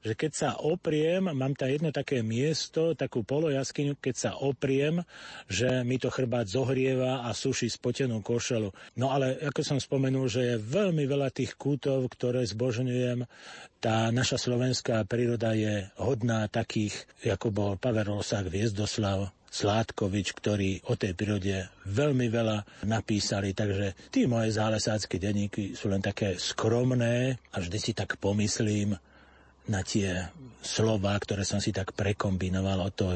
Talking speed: 145 wpm